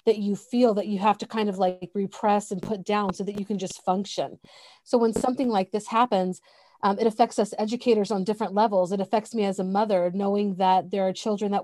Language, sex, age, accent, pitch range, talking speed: English, female, 30-49, American, 190-225 Hz, 235 wpm